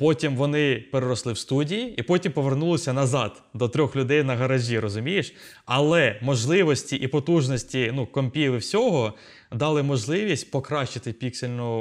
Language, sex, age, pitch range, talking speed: Ukrainian, male, 20-39, 115-145 Hz, 135 wpm